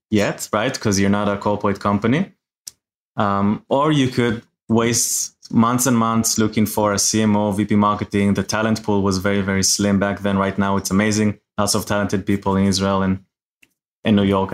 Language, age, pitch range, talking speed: English, 20-39, 100-115 Hz, 185 wpm